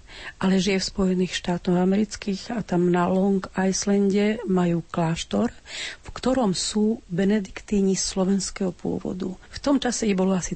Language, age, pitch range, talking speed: Slovak, 40-59, 180-210 Hz, 140 wpm